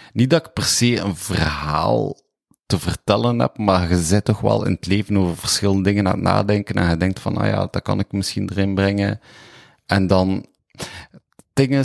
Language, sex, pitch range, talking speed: Dutch, male, 95-120 Hz, 205 wpm